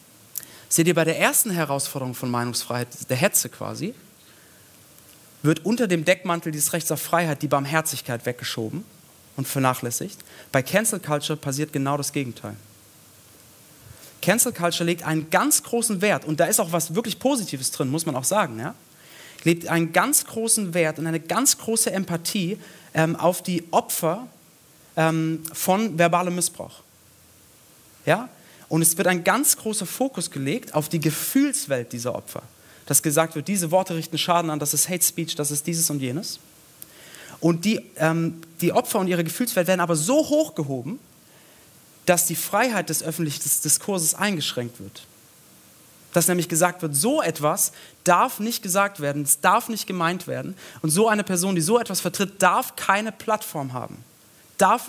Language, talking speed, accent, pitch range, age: German, 160 wpm, German, 150-190 Hz, 40-59